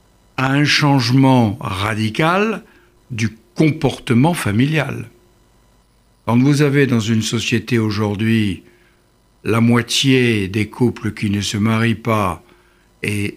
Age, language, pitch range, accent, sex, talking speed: 60-79, French, 110-155 Hz, French, male, 110 wpm